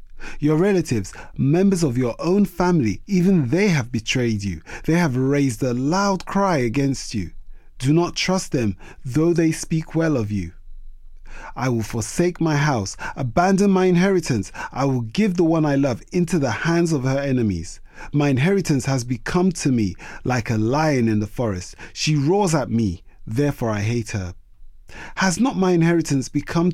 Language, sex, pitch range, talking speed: English, male, 115-165 Hz, 170 wpm